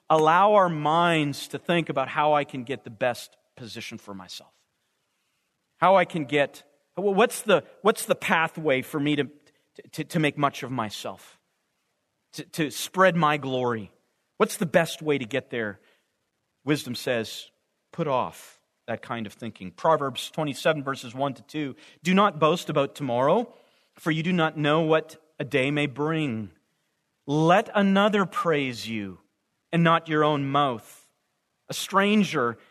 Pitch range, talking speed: 145-205 Hz, 155 wpm